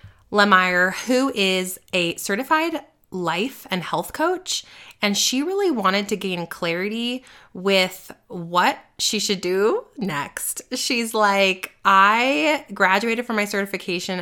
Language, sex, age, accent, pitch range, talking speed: English, female, 20-39, American, 175-220 Hz, 120 wpm